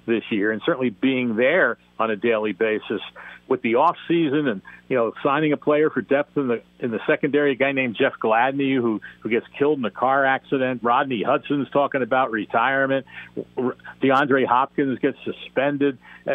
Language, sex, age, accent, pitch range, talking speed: English, male, 60-79, American, 125-145 Hz, 180 wpm